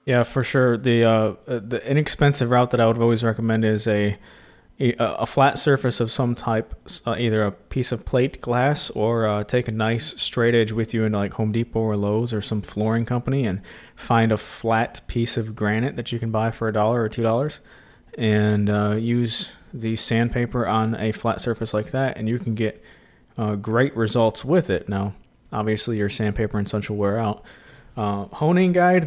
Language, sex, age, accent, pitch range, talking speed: English, male, 20-39, American, 110-125 Hz, 200 wpm